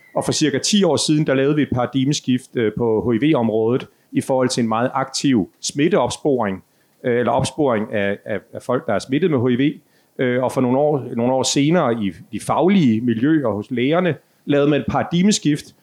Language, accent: Danish, native